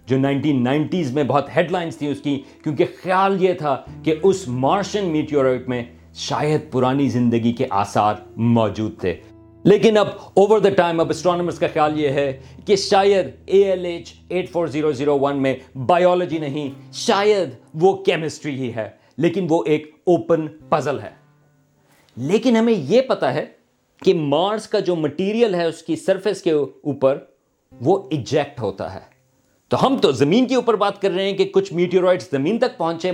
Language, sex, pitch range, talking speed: Urdu, male, 135-185 Hz, 165 wpm